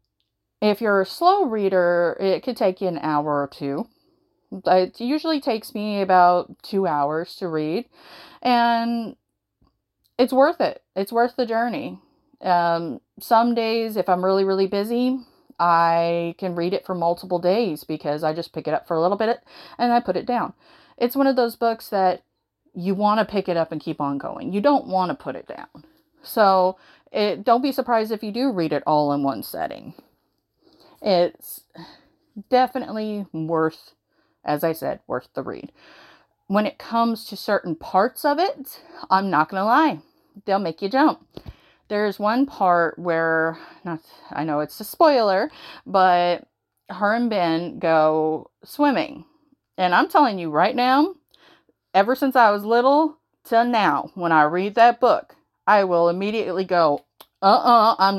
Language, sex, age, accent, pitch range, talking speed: English, female, 30-49, American, 170-235 Hz, 165 wpm